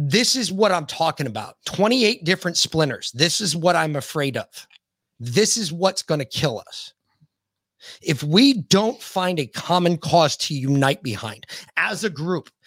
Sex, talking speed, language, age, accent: male, 165 wpm, English, 30-49, American